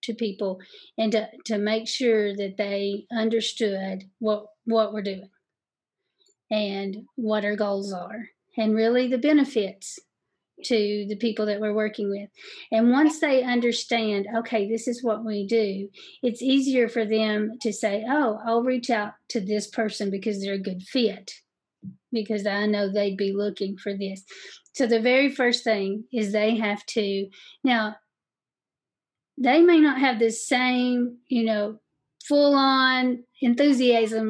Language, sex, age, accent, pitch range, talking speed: English, female, 40-59, American, 210-250 Hz, 150 wpm